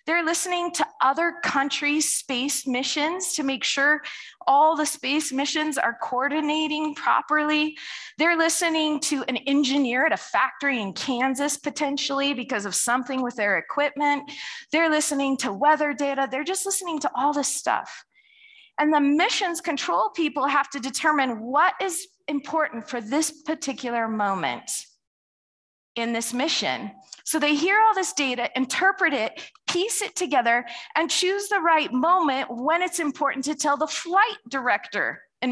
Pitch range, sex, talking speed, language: 255-325 Hz, female, 150 wpm, English